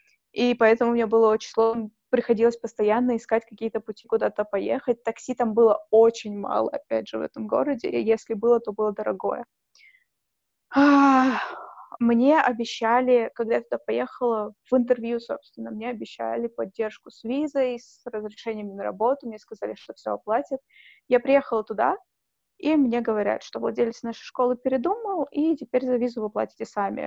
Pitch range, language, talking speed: 220-255 Hz, Russian, 155 wpm